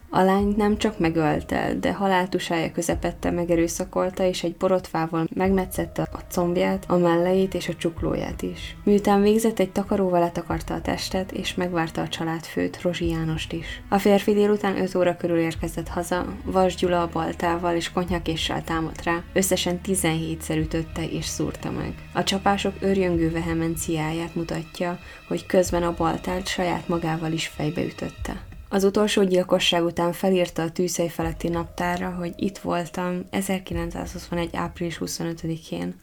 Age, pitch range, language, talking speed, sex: 10-29, 165-185 Hz, Hungarian, 145 wpm, female